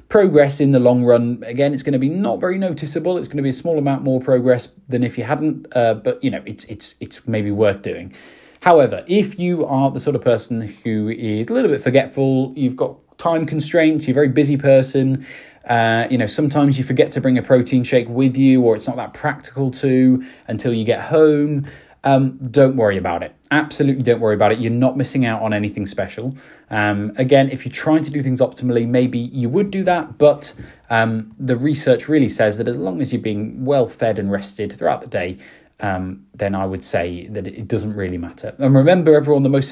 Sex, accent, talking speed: male, British, 220 wpm